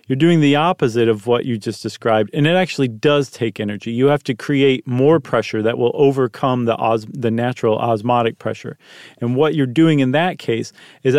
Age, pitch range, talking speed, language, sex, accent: 40-59, 120-155 Hz, 200 wpm, English, male, American